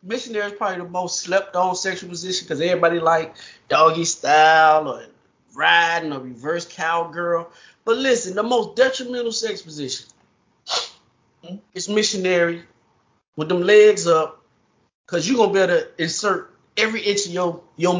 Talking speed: 145 wpm